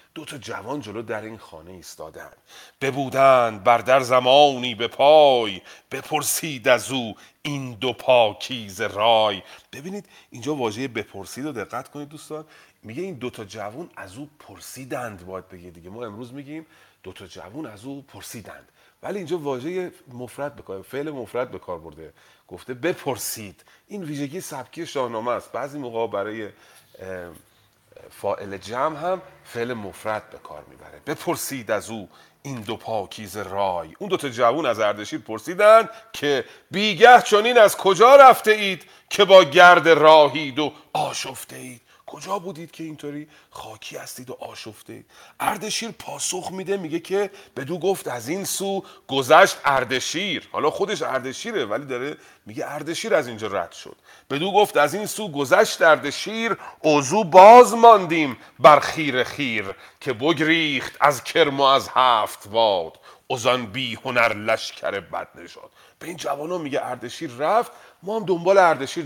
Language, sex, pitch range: Persian, male, 115-180 Hz